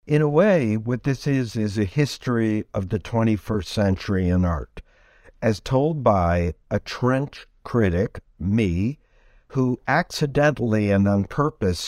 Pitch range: 95-125 Hz